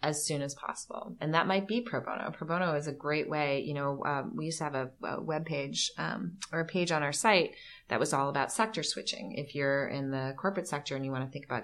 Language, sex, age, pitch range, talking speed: English, female, 30-49, 130-155 Hz, 265 wpm